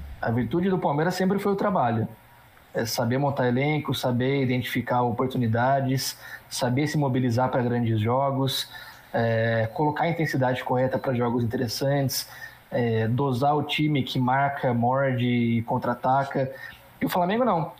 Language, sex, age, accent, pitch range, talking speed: Portuguese, male, 20-39, Brazilian, 120-150 Hz, 130 wpm